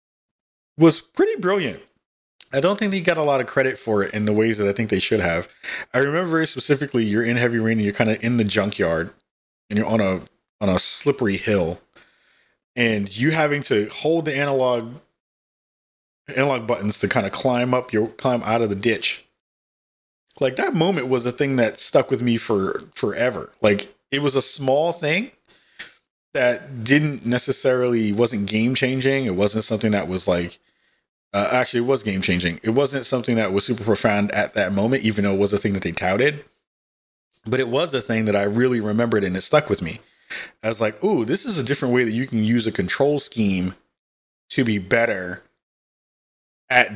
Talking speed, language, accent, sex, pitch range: 200 wpm, English, American, male, 105-135 Hz